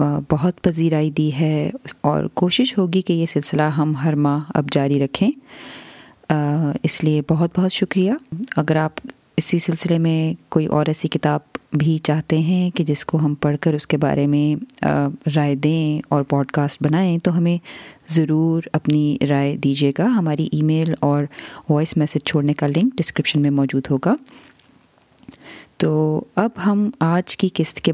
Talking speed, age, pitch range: 165 wpm, 30-49, 150-175 Hz